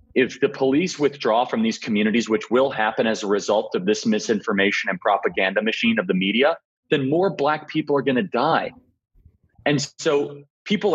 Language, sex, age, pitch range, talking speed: English, male, 30-49, 110-165 Hz, 180 wpm